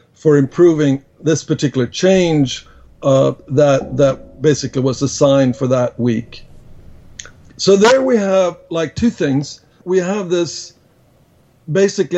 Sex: male